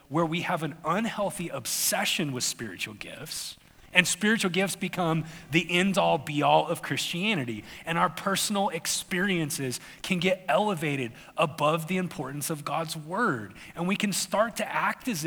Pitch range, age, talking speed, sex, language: 160-200 Hz, 30-49, 155 wpm, male, English